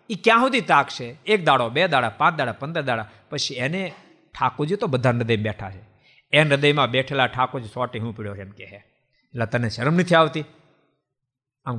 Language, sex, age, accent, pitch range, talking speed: Gujarati, male, 50-69, native, 125-185 Hz, 170 wpm